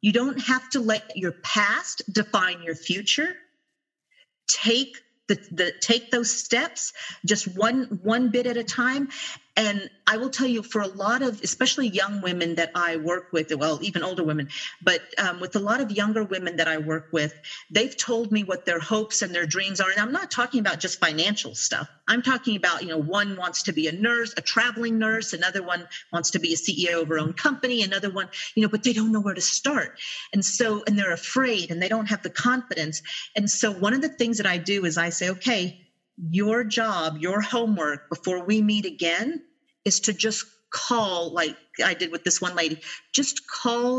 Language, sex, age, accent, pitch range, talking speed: English, female, 50-69, American, 175-240 Hz, 210 wpm